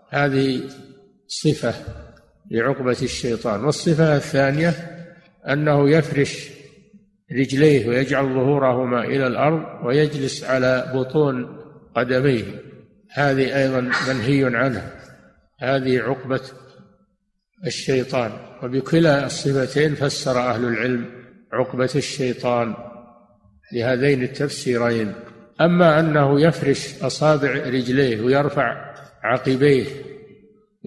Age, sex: 60-79, male